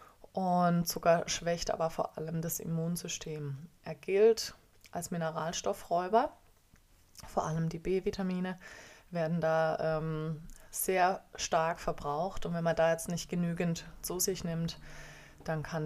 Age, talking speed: 20-39, 130 wpm